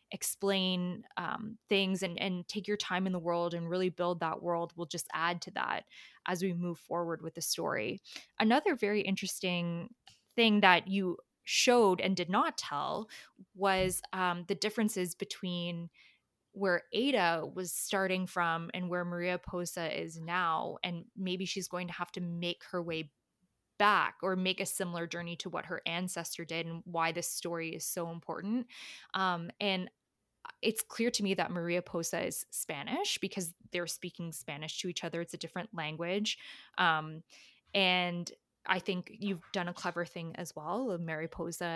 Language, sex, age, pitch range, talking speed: English, female, 20-39, 170-195 Hz, 170 wpm